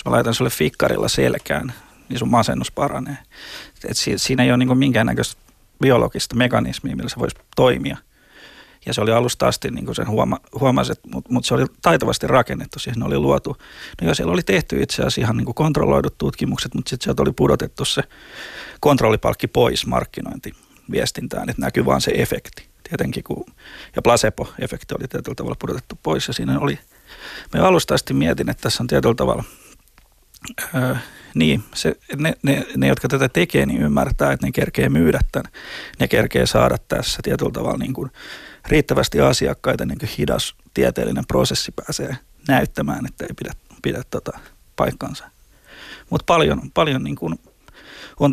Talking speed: 160 wpm